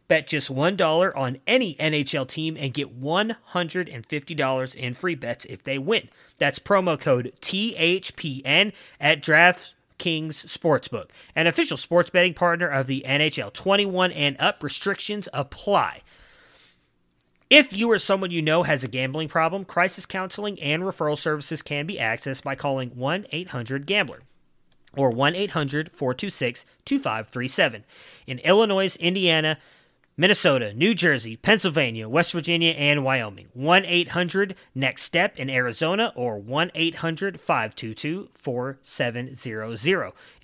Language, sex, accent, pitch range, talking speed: English, male, American, 135-180 Hz, 110 wpm